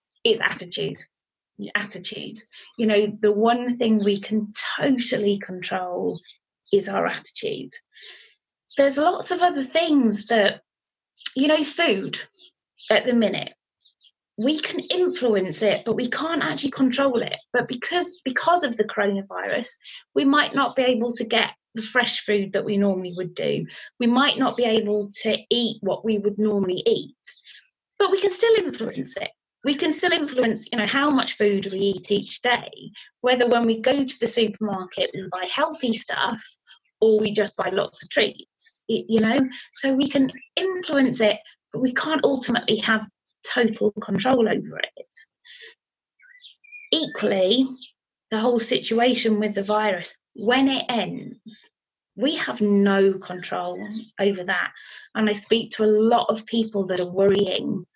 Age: 20-39